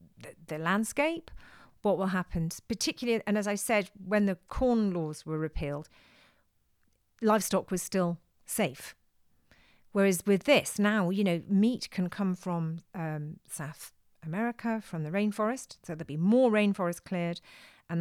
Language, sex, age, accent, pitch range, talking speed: English, female, 40-59, British, 170-210 Hz, 145 wpm